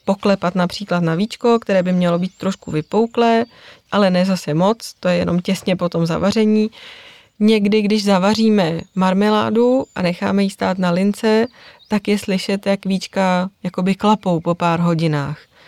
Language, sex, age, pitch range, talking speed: Czech, female, 20-39, 165-195 Hz, 155 wpm